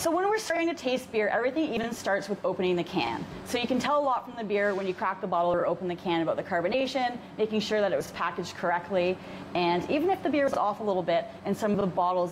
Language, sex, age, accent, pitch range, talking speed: English, female, 30-49, American, 180-265 Hz, 280 wpm